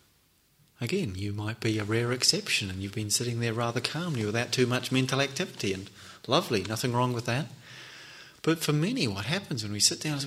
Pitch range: 105-140 Hz